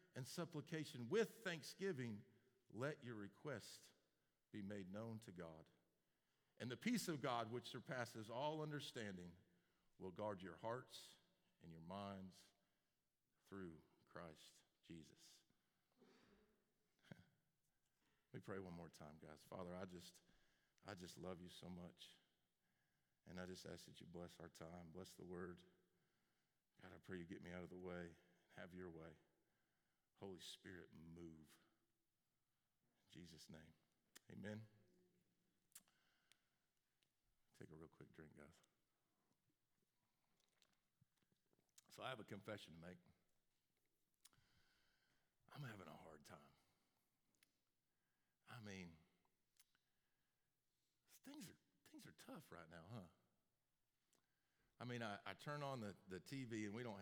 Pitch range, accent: 90-120 Hz, American